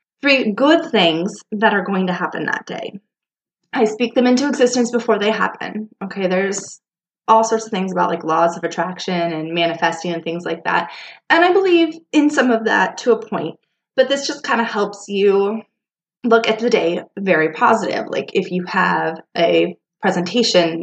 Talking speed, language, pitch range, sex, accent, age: 185 wpm, English, 180-245 Hz, female, American, 20-39